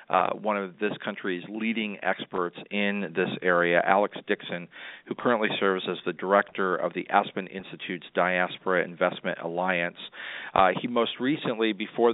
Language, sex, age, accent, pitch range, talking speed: English, male, 40-59, American, 90-100 Hz, 150 wpm